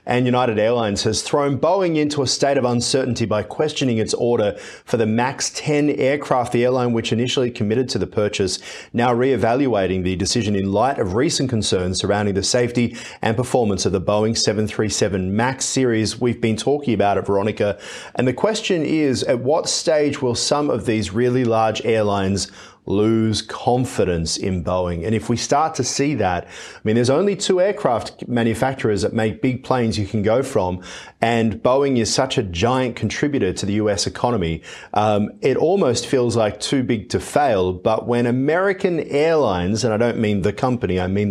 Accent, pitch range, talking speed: Australian, 105-130 Hz, 180 wpm